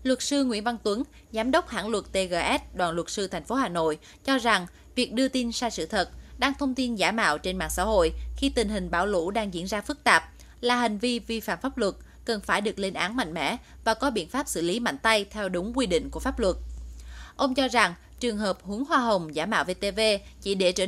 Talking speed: 250 wpm